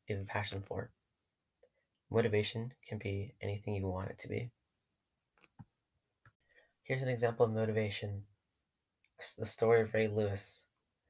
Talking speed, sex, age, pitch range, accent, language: 130 wpm, male, 10-29, 100-115 Hz, American, English